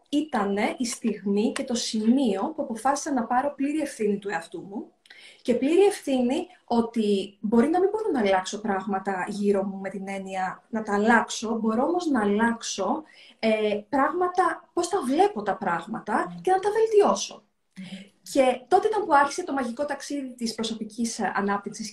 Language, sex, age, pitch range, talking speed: Greek, female, 20-39, 220-315 Hz, 165 wpm